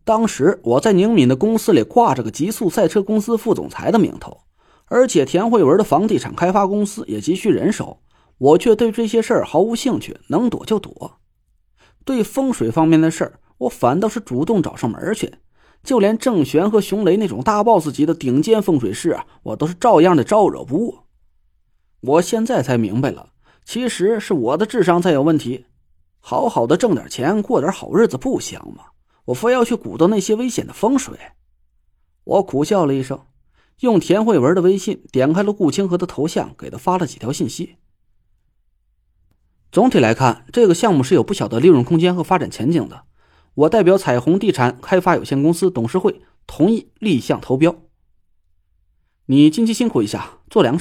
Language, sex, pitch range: Chinese, male, 130-215 Hz